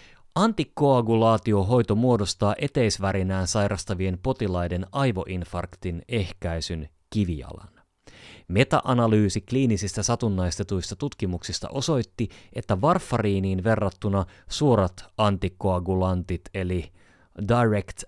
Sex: male